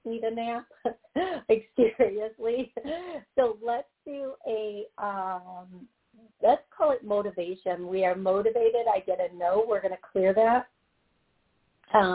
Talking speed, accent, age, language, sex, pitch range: 130 wpm, American, 50-69, English, female, 190-240 Hz